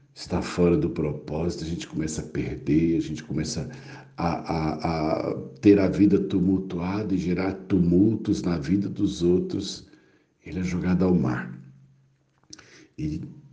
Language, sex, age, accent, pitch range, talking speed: Portuguese, male, 60-79, Brazilian, 80-105 Hz, 135 wpm